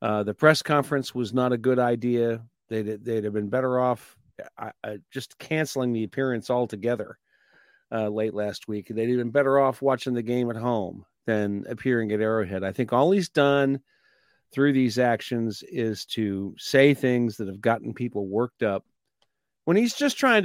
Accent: American